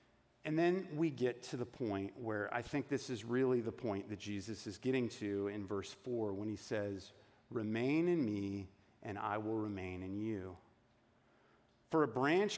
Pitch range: 110-150 Hz